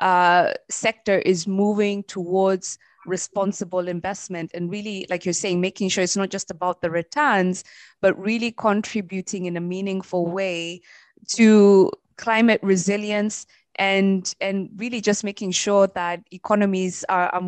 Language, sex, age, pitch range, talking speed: English, female, 20-39, 180-215 Hz, 135 wpm